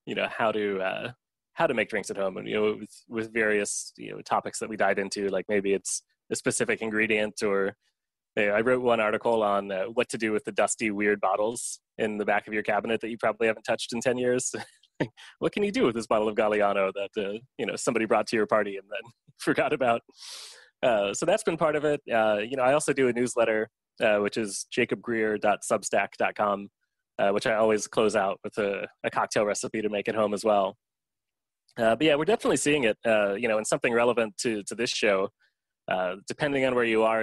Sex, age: male, 20-39